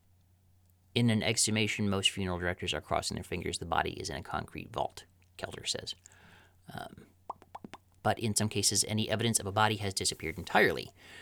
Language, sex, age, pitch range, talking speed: English, male, 30-49, 90-110 Hz, 170 wpm